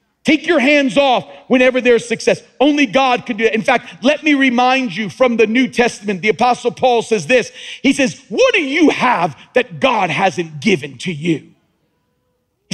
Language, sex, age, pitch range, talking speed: English, male, 50-69, 180-255 Hz, 190 wpm